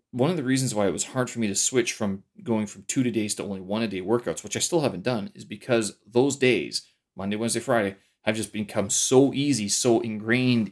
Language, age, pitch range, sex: English, 30-49, 105-130 Hz, male